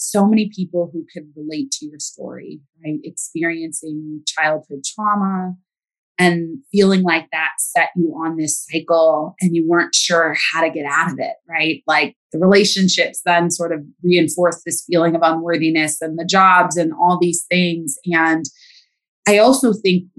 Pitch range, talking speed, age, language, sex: 165-195 Hz, 165 wpm, 20-39, English, female